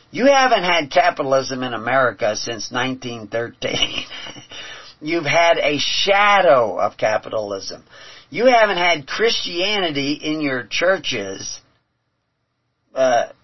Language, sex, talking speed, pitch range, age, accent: English, male, 100 wpm, 120-150 Hz, 50-69, American